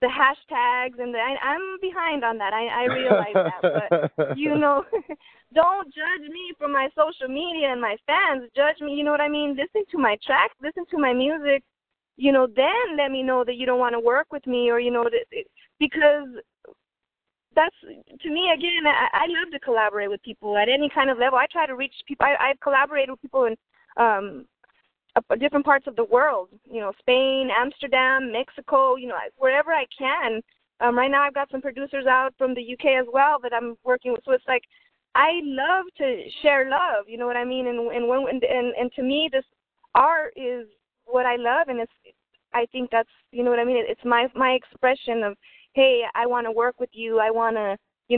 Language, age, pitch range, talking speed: English, 20-39, 245-295 Hz, 215 wpm